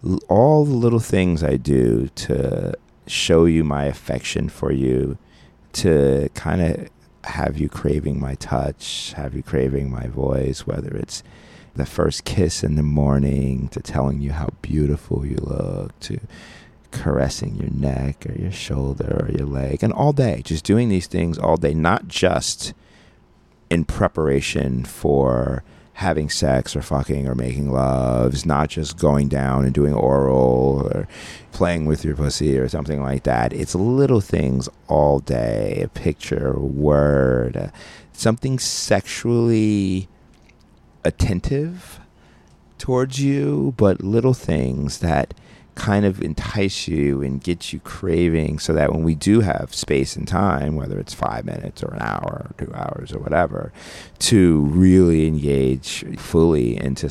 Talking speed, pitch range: 145 wpm, 70-90 Hz